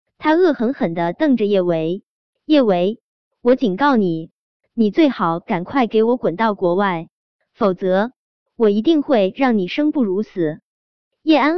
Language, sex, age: Chinese, male, 20-39